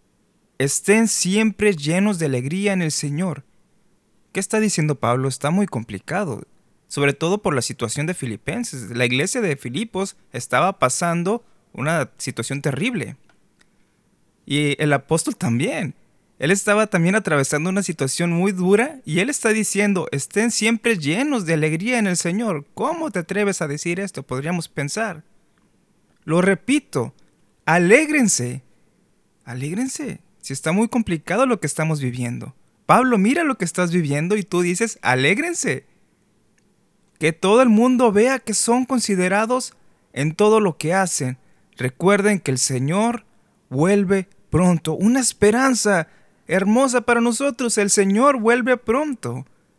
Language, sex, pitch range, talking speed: Spanish, male, 155-225 Hz, 135 wpm